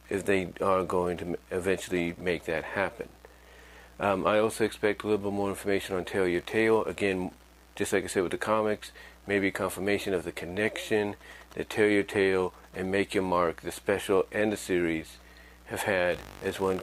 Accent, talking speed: American, 185 wpm